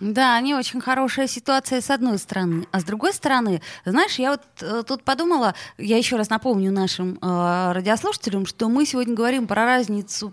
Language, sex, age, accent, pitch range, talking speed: Russian, female, 20-39, native, 195-255 Hz, 175 wpm